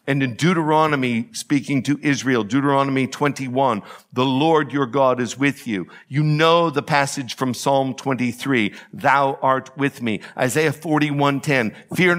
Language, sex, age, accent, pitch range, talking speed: English, male, 60-79, American, 130-155 Hz, 145 wpm